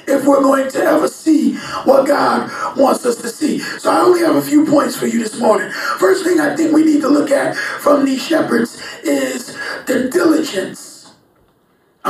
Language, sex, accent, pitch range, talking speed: English, male, American, 275-340 Hz, 190 wpm